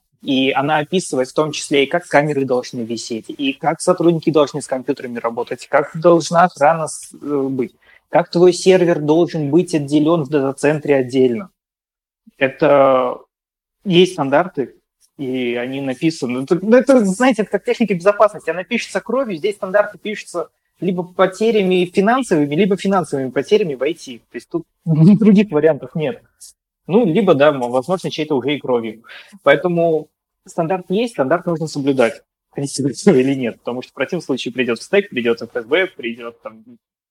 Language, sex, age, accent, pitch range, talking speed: Russian, male, 20-39, native, 130-185 Hz, 140 wpm